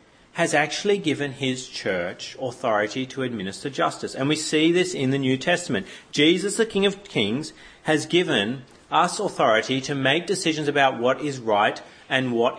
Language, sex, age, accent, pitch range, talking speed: English, male, 40-59, Australian, 130-175 Hz, 165 wpm